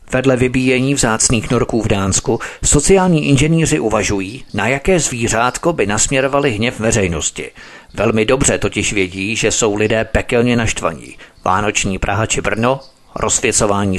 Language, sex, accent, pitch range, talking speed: Czech, male, native, 105-130 Hz, 130 wpm